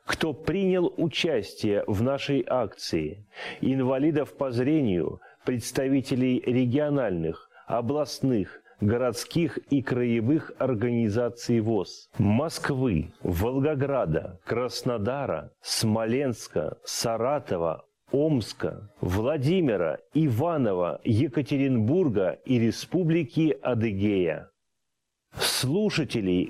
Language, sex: Russian, male